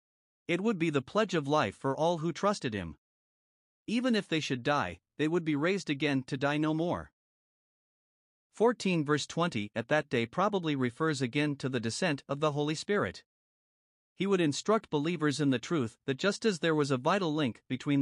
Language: English